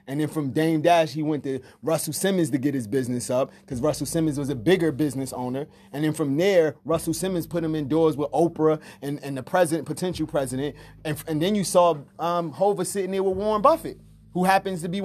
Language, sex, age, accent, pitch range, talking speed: English, male, 30-49, American, 135-180 Hz, 225 wpm